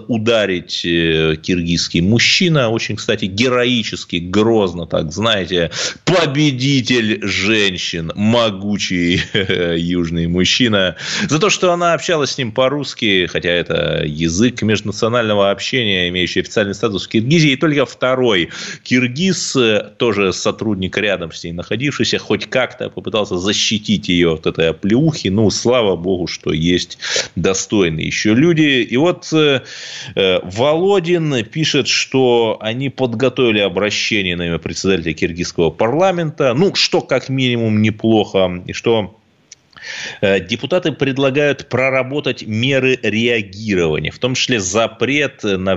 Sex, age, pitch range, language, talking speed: male, 20-39, 95-145 Hz, Russian, 115 wpm